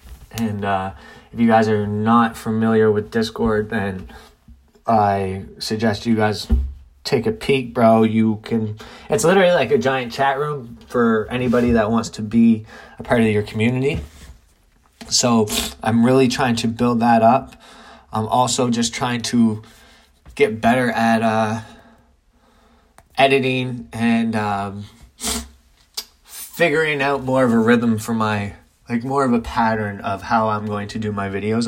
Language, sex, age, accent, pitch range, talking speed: English, male, 20-39, American, 110-125 Hz, 150 wpm